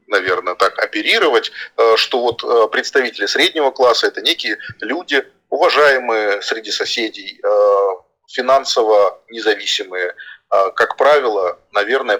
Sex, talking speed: male, 95 wpm